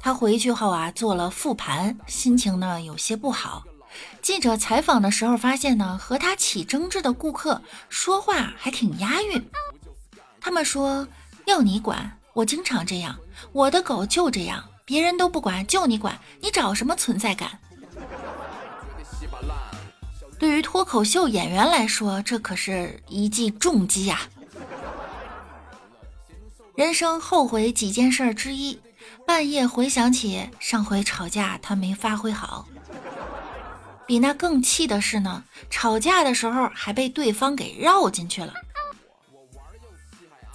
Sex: female